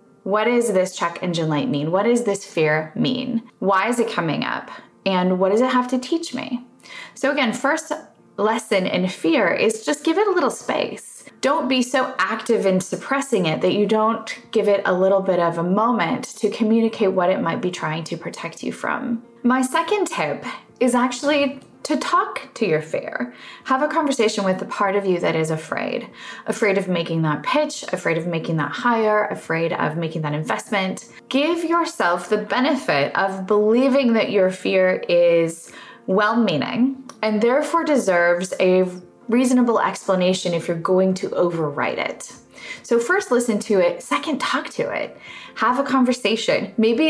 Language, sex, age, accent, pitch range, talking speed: English, female, 20-39, American, 185-250 Hz, 180 wpm